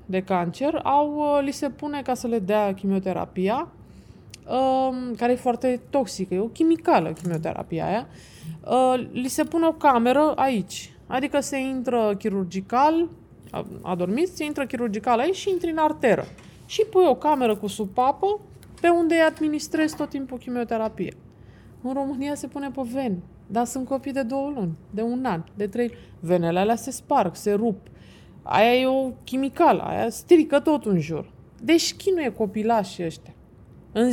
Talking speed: 160 wpm